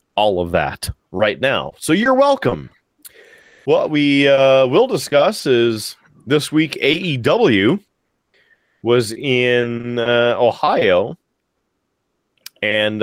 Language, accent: English, American